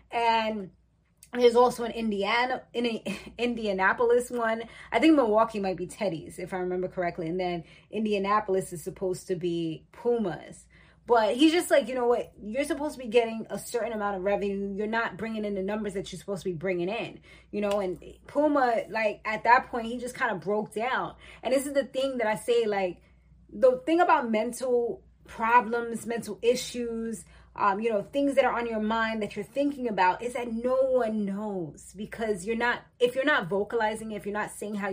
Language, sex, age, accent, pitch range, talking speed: English, female, 20-39, American, 200-245 Hz, 200 wpm